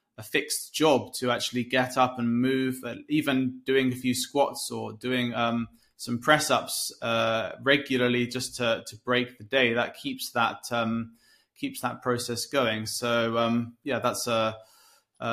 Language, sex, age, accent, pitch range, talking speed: English, male, 20-39, British, 115-130 Hz, 170 wpm